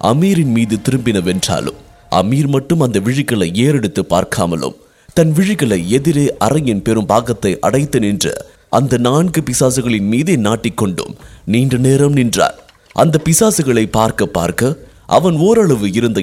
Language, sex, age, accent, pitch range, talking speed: English, male, 30-49, Indian, 120-190 Hz, 120 wpm